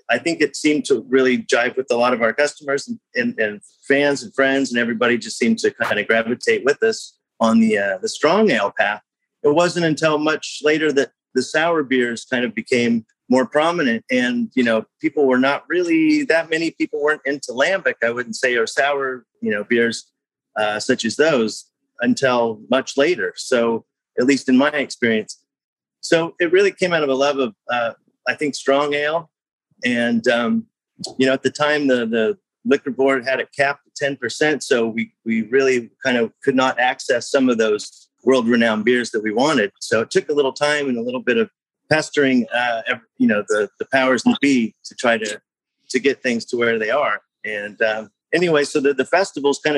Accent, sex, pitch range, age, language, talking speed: American, male, 120-155 Hz, 30-49, English, 205 wpm